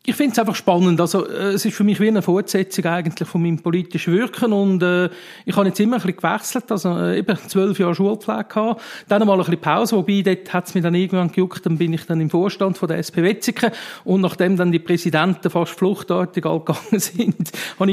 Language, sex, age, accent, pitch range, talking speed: German, male, 40-59, Austrian, 165-195 Hz, 220 wpm